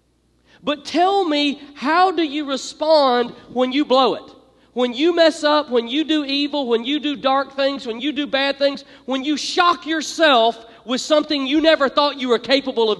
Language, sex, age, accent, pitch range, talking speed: English, male, 40-59, American, 235-295 Hz, 195 wpm